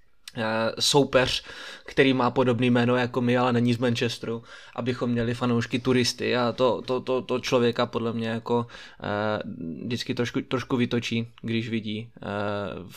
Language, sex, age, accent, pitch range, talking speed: Czech, male, 20-39, native, 110-125 Hz, 150 wpm